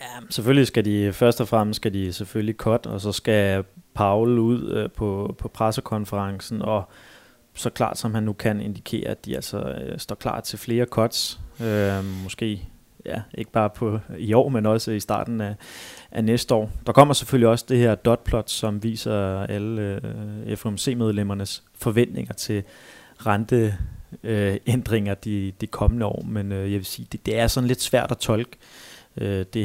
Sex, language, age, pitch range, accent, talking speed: male, Danish, 30-49, 100-115 Hz, native, 180 wpm